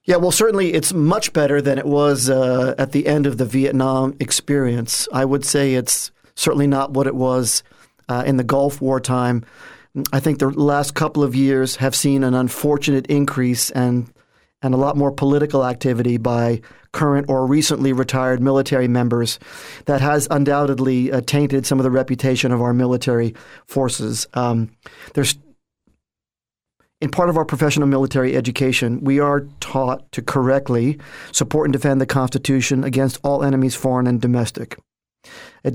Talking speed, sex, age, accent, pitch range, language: 165 wpm, male, 40-59, American, 130-145 Hz, English